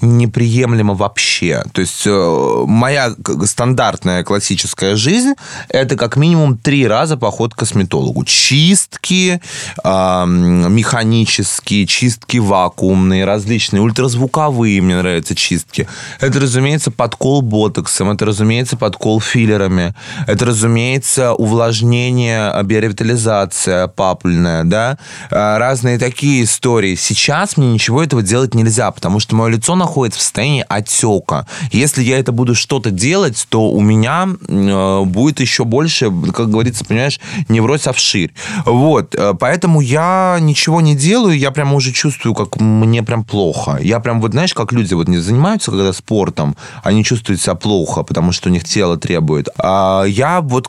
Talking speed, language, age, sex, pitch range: 135 wpm, Russian, 20-39, male, 100-140 Hz